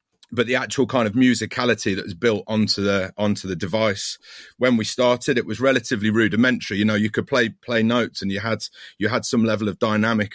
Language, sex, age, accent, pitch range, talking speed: English, male, 30-49, British, 100-115 Hz, 215 wpm